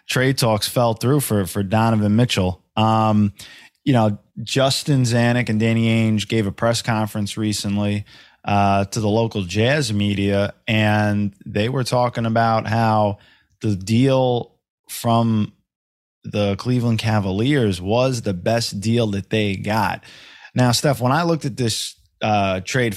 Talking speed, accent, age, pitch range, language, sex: 145 wpm, American, 20-39, 105-130 Hz, English, male